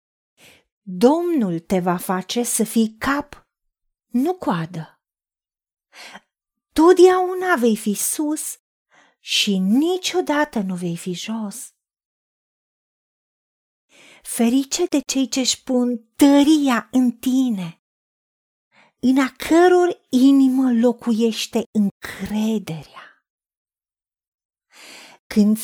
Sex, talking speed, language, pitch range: female, 80 wpm, Romanian, 200-295 Hz